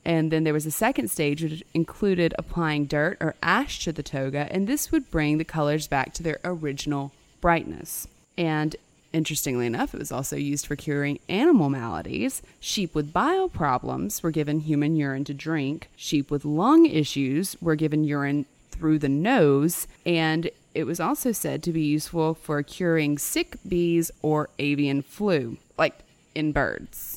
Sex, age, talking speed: female, 30-49, 170 wpm